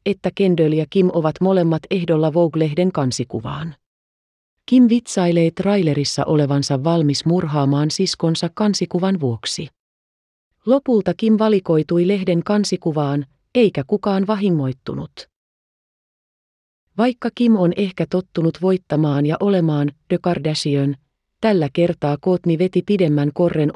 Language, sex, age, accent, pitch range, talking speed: Finnish, female, 30-49, native, 150-190 Hz, 105 wpm